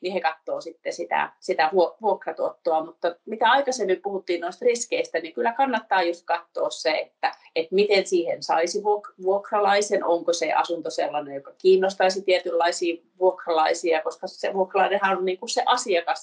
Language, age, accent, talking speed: Finnish, 30-49, native, 150 wpm